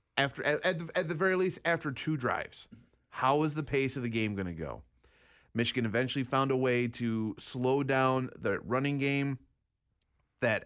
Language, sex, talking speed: English, male, 180 wpm